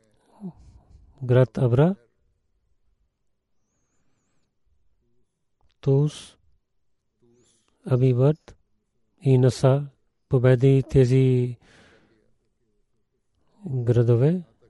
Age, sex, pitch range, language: 40-59, male, 120-135 Hz, Bulgarian